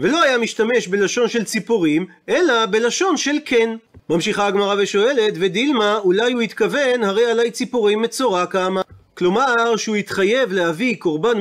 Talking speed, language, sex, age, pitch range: 140 wpm, Hebrew, male, 30-49, 195-250 Hz